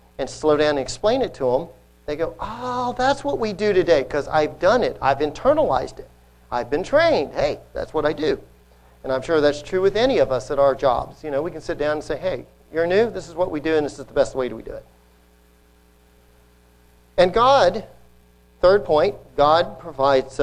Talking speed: 215 wpm